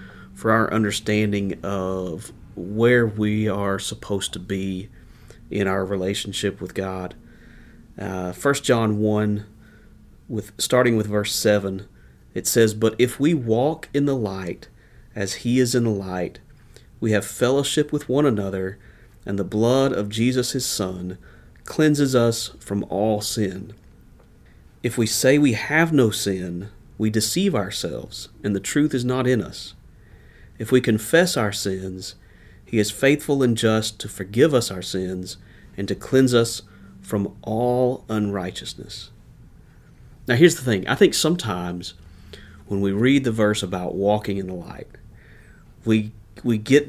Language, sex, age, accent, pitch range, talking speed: English, male, 40-59, American, 100-120 Hz, 150 wpm